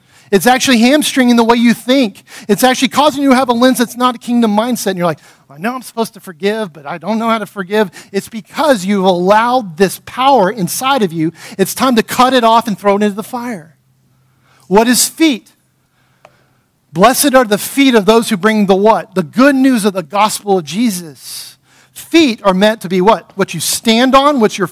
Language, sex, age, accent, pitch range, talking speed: English, male, 40-59, American, 180-245 Hz, 220 wpm